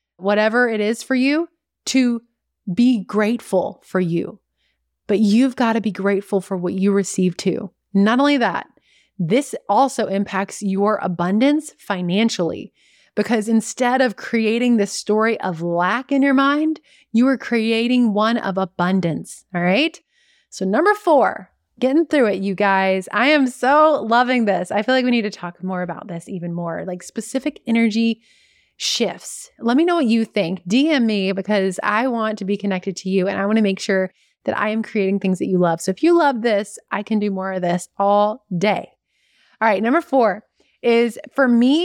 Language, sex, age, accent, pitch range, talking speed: English, female, 30-49, American, 195-250 Hz, 185 wpm